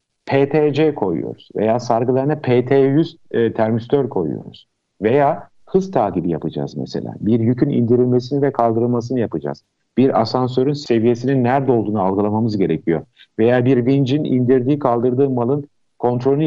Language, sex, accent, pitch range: Turkish, male, native, 105-140 Hz